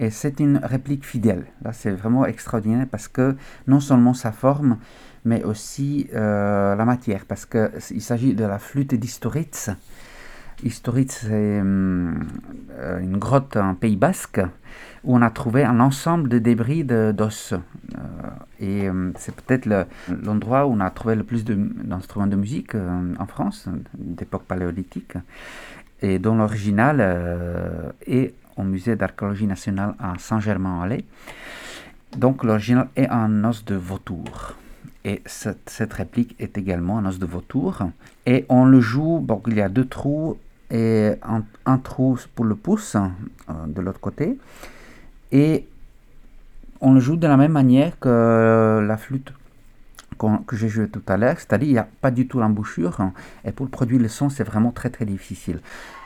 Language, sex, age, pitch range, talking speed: French, male, 50-69, 100-130 Hz, 170 wpm